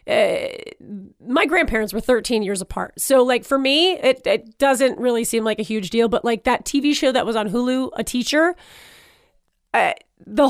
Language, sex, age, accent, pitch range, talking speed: English, female, 30-49, American, 235-300 Hz, 190 wpm